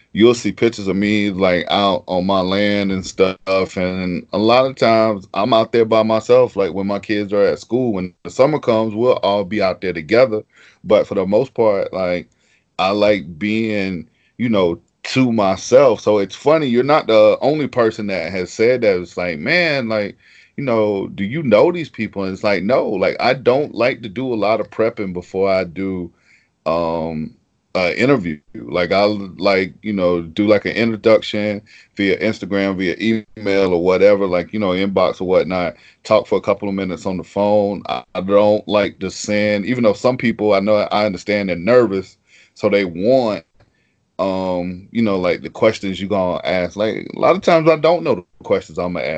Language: English